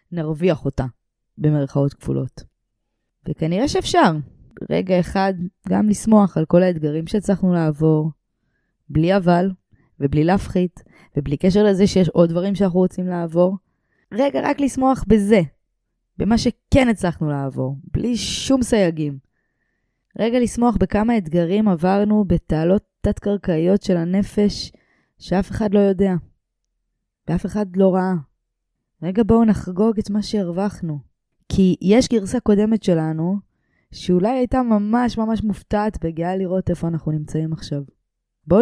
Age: 20-39